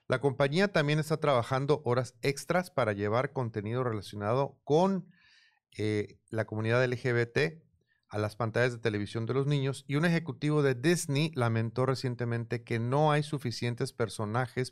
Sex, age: male, 40-59